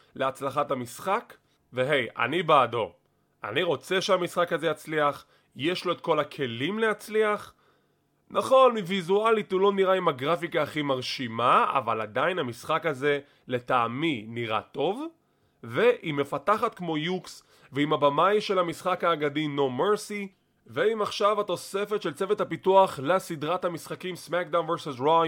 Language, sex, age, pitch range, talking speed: English, male, 30-49, 145-205 Hz, 125 wpm